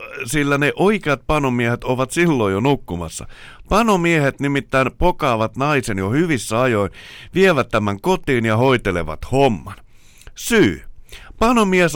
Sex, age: male, 60-79